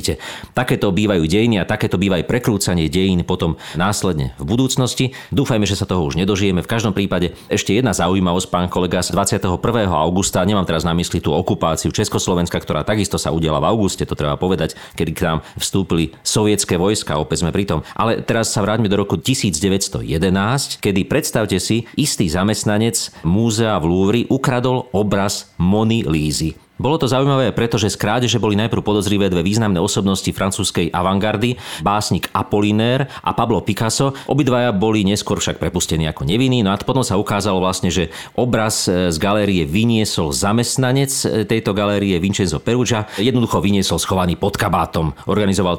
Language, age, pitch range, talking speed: Slovak, 40-59, 85-110 Hz, 160 wpm